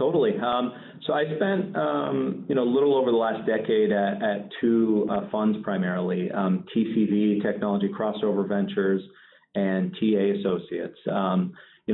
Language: English